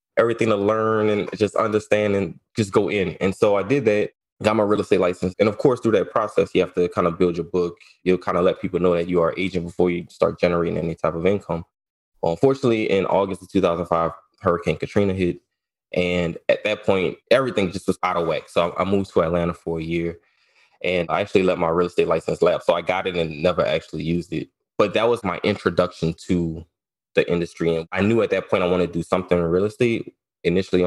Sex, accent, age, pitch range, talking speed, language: male, American, 20-39, 85-100 Hz, 235 wpm, English